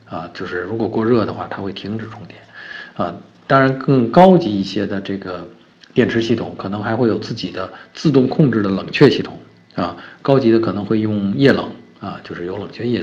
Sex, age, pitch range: male, 50-69, 90-115 Hz